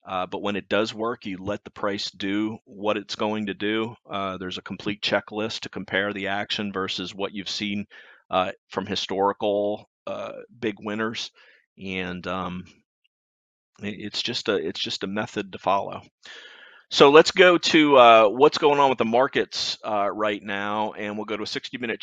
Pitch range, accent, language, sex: 95-105 Hz, American, English, male